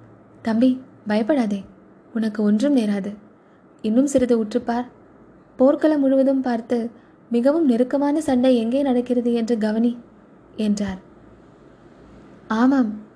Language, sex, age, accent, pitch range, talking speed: Tamil, female, 20-39, native, 225-270 Hz, 90 wpm